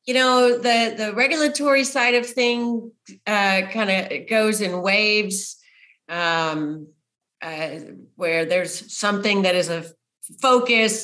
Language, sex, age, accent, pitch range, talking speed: English, female, 40-59, American, 175-225 Hz, 125 wpm